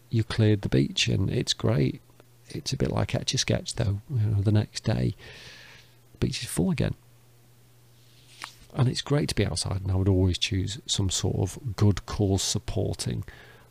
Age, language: 40-59, English